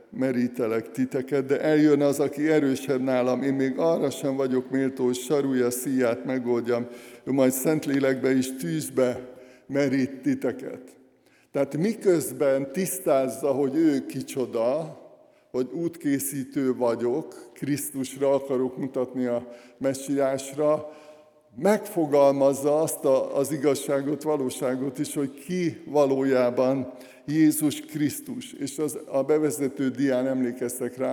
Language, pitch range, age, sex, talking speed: Hungarian, 130-150 Hz, 60-79, male, 110 wpm